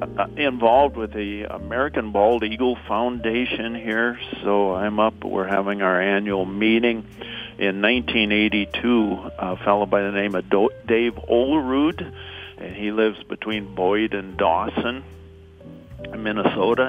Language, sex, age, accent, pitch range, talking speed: English, male, 50-69, American, 95-115 Hz, 125 wpm